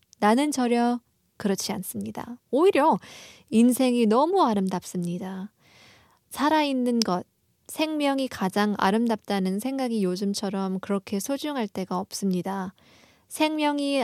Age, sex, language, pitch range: 20-39, female, Korean, 190-245 Hz